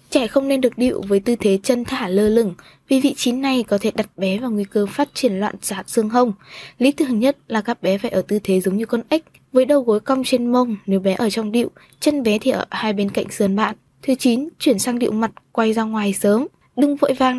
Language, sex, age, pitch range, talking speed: Vietnamese, female, 20-39, 205-255 Hz, 260 wpm